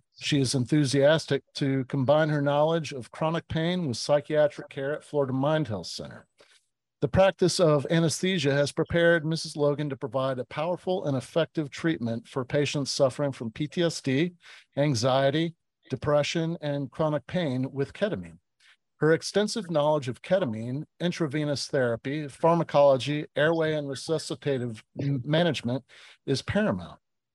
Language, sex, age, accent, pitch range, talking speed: English, male, 50-69, American, 135-165 Hz, 130 wpm